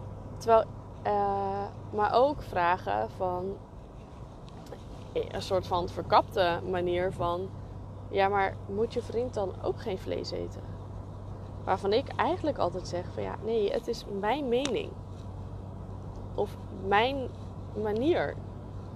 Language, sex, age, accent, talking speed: Dutch, female, 20-39, Dutch, 115 wpm